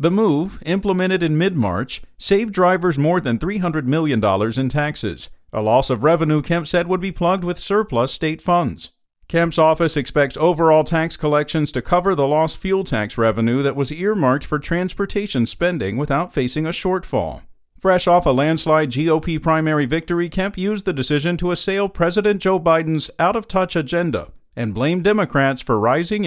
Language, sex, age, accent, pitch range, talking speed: English, male, 50-69, American, 135-175 Hz, 165 wpm